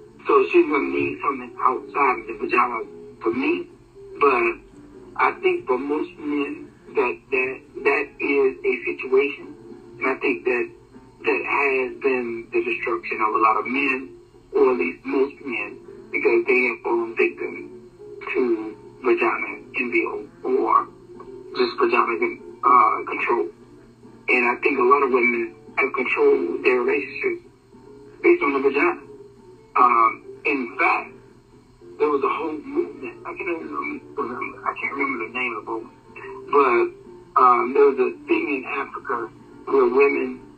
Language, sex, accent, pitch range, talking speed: English, male, American, 360-390 Hz, 145 wpm